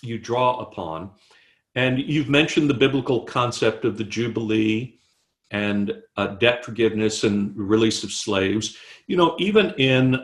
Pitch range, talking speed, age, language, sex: 110-150 Hz, 140 wpm, 50-69, English, male